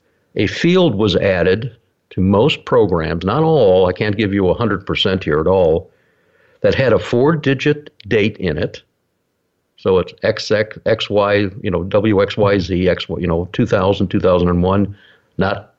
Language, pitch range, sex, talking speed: English, 95-125 Hz, male, 165 wpm